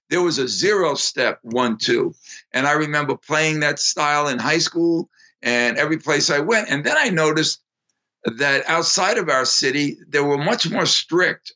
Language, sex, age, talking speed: Italian, male, 50-69, 180 wpm